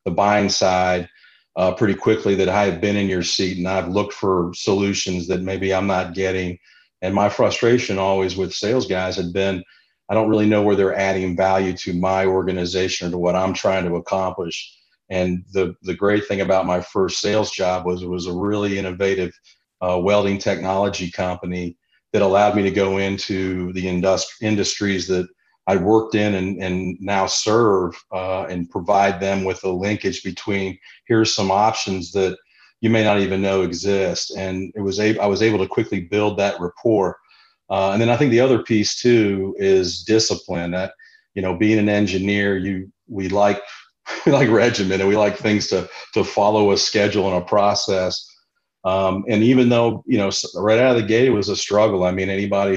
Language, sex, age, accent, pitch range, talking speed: English, male, 40-59, American, 95-100 Hz, 195 wpm